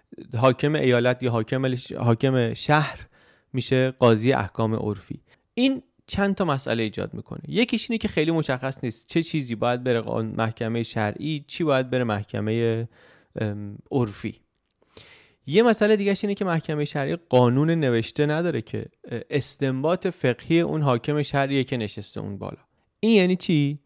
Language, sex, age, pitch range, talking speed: Persian, male, 30-49, 115-155 Hz, 140 wpm